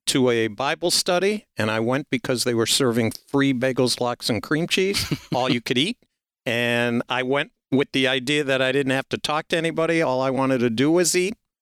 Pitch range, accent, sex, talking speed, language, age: 115-140 Hz, American, male, 215 wpm, English, 50-69